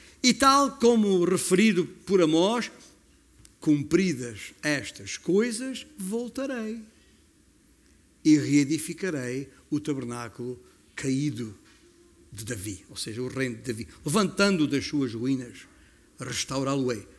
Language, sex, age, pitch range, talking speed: Portuguese, male, 50-69, 140-220 Hz, 100 wpm